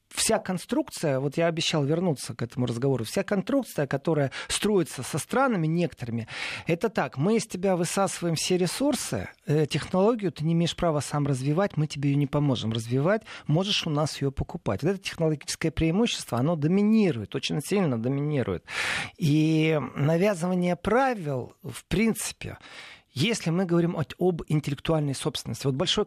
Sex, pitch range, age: male, 135-190 Hz, 40-59